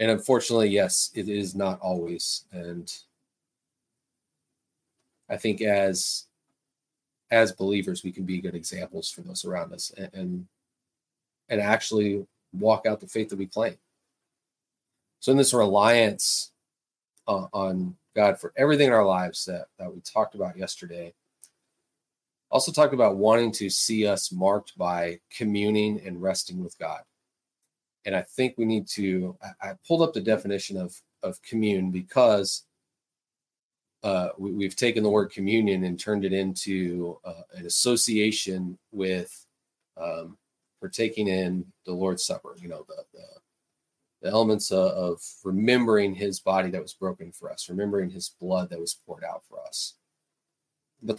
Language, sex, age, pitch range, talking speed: English, male, 30-49, 95-115 Hz, 145 wpm